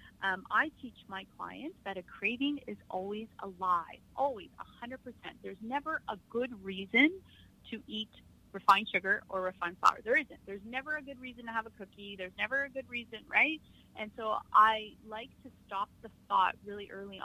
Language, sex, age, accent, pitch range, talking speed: English, female, 30-49, American, 195-275 Hz, 185 wpm